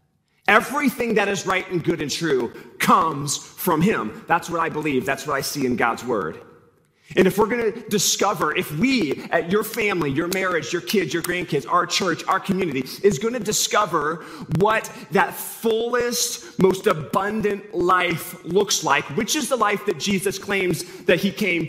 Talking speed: 180 wpm